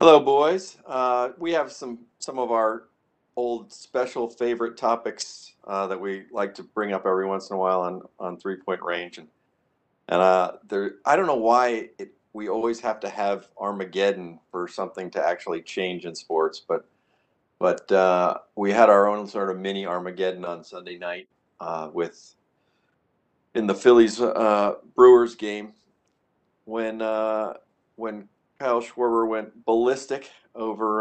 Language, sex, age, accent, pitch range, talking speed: English, male, 50-69, American, 95-115 Hz, 160 wpm